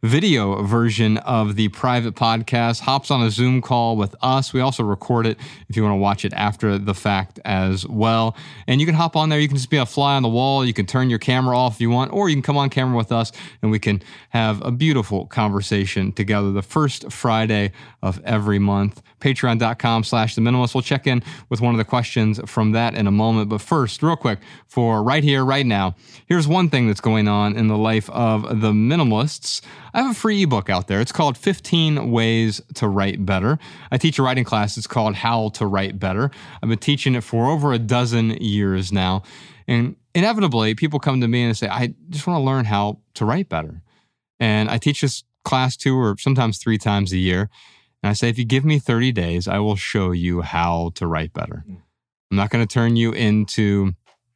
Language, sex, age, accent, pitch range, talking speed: English, male, 30-49, American, 105-130 Hz, 220 wpm